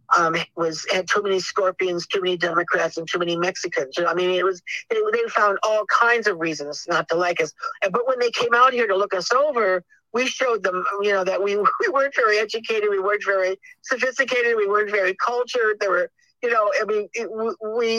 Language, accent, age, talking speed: English, American, 50-69, 220 wpm